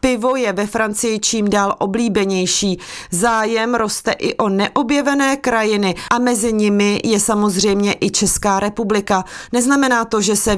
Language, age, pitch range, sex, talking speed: Czech, 30-49, 195-245 Hz, female, 140 wpm